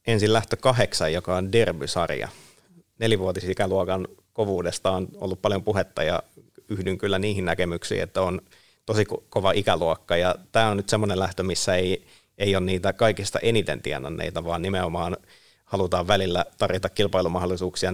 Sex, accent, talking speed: male, native, 140 wpm